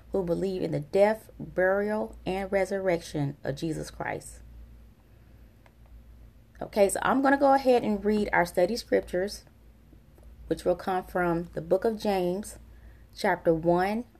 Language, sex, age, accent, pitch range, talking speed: English, female, 20-39, American, 120-200 Hz, 140 wpm